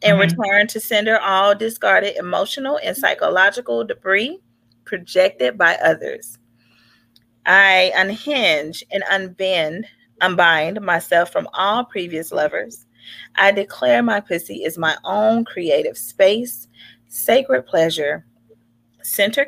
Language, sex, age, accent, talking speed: English, female, 30-49, American, 110 wpm